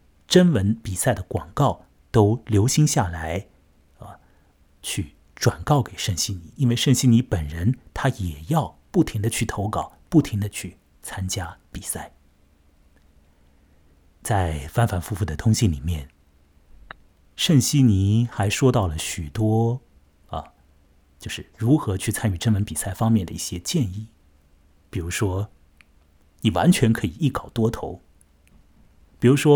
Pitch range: 75-115 Hz